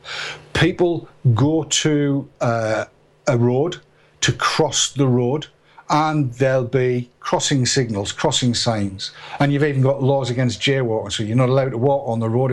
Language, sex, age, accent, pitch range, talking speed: English, male, 50-69, British, 125-160 Hz, 160 wpm